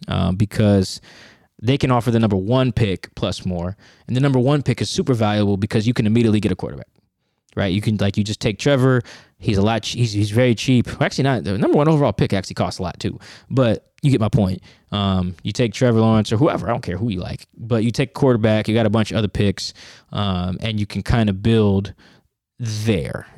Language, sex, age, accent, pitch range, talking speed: English, male, 20-39, American, 100-125 Hz, 235 wpm